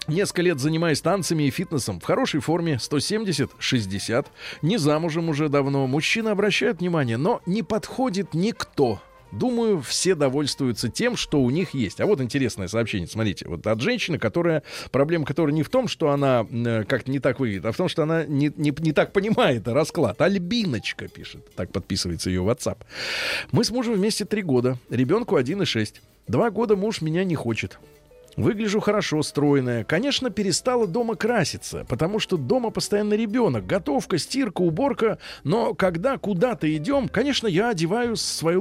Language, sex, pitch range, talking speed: Russian, male, 140-215 Hz, 160 wpm